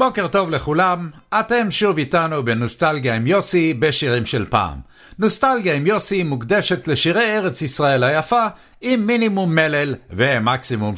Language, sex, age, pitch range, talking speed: English, male, 60-79, 150-220 Hz, 130 wpm